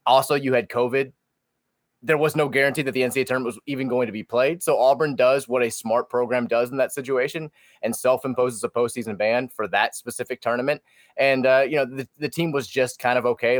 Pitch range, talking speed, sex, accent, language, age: 115-135 Hz, 220 wpm, male, American, English, 20-39